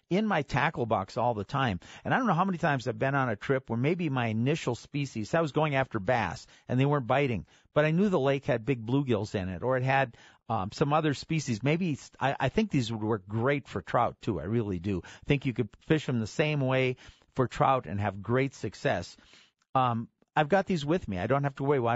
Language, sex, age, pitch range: English, male, 50-69, 115-145 Hz